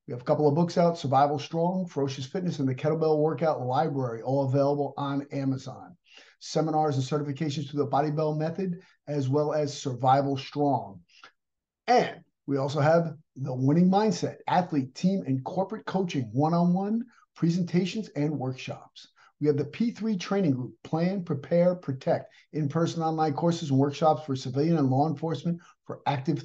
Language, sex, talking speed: English, male, 160 wpm